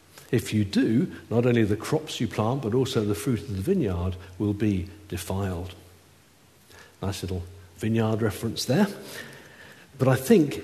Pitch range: 100-130 Hz